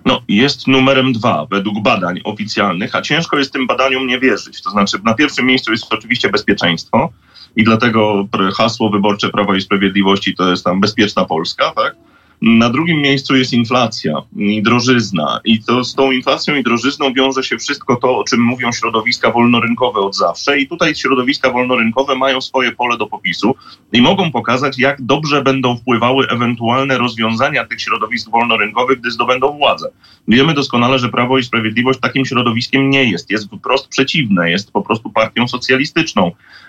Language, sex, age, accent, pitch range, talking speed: Polish, male, 30-49, native, 110-135 Hz, 165 wpm